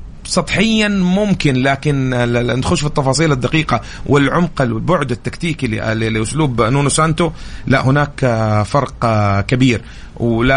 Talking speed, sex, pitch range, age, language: 110 wpm, male, 110-130 Hz, 30-49, English